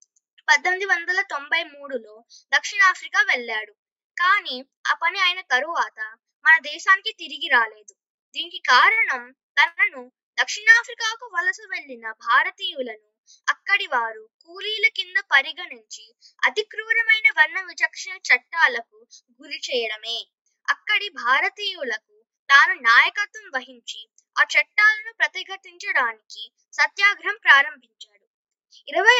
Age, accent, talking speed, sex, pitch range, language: 20-39, native, 90 wpm, female, 250-395 Hz, Telugu